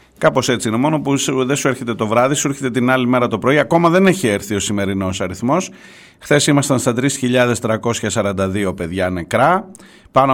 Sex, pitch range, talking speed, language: male, 100-135 Hz, 180 wpm, Greek